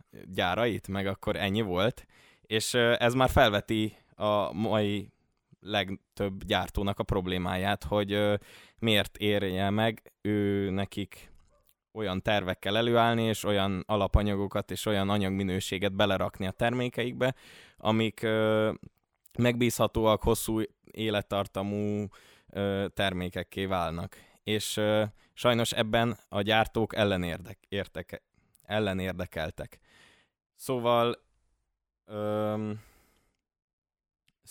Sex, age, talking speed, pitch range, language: male, 20-39, 85 wpm, 95-110 Hz, Hungarian